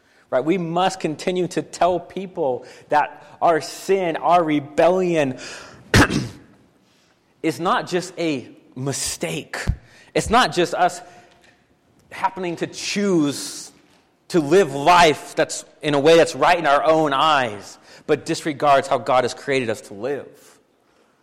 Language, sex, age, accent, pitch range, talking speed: English, male, 30-49, American, 110-165 Hz, 130 wpm